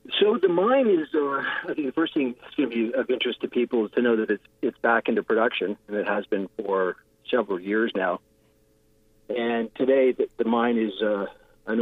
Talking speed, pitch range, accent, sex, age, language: 220 wpm, 110-125 Hz, American, male, 40-59, English